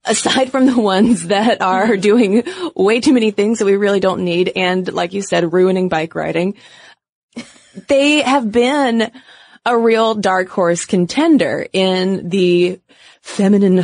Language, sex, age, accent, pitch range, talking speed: English, female, 20-39, American, 185-265 Hz, 145 wpm